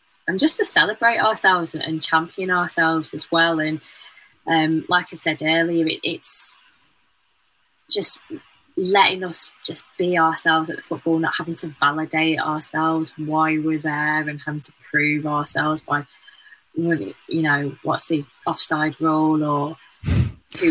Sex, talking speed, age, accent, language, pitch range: female, 145 wpm, 20-39, British, English, 155-185 Hz